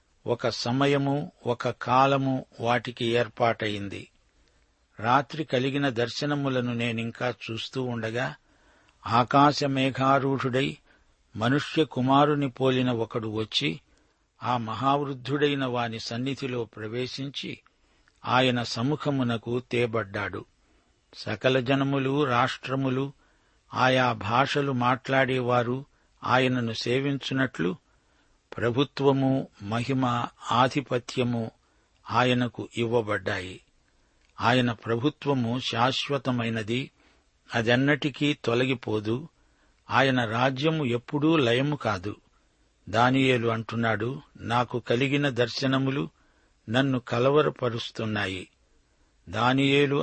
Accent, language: native, Telugu